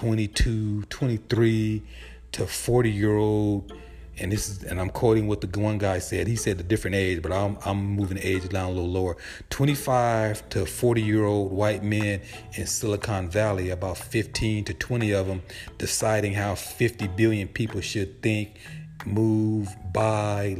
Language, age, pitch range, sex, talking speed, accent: English, 40-59, 100-115 Hz, male, 165 wpm, American